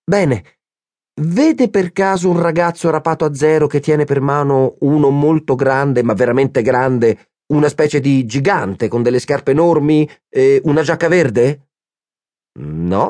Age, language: 40-59, Italian